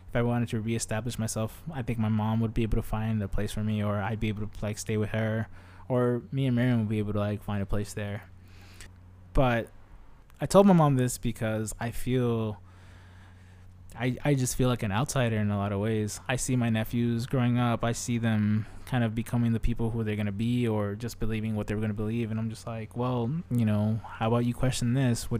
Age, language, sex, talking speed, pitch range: 20-39, English, male, 240 wpm, 100-120 Hz